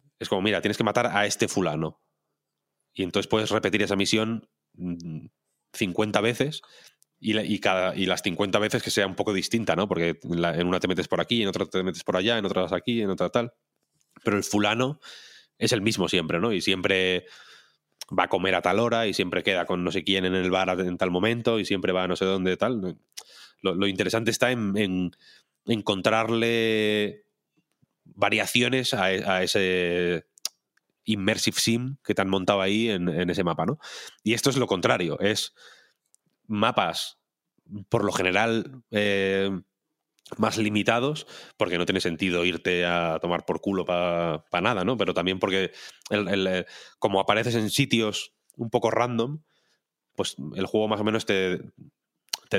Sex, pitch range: male, 90-115 Hz